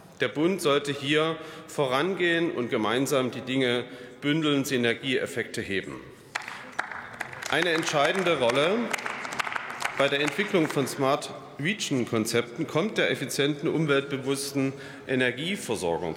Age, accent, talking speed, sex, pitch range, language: 40-59, German, 95 wpm, male, 120-150 Hz, German